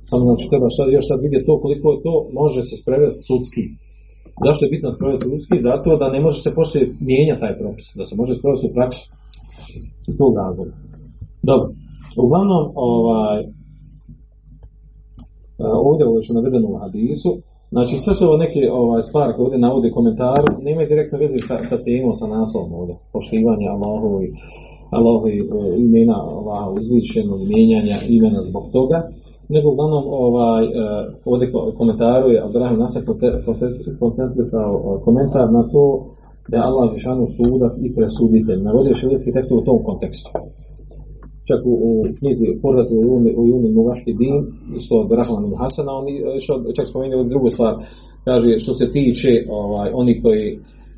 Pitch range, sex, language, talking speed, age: 115-145 Hz, male, Croatian, 140 wpm, 40-59